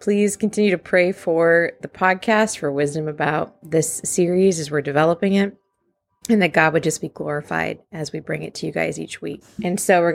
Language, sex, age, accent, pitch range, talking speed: English, female, 20-39, American, 155-190 Hz, 205 wpm